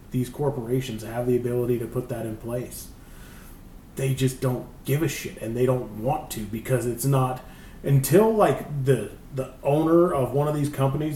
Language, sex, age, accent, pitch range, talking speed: English, male, 30-49, American, 120-140 Hz, 185 wpm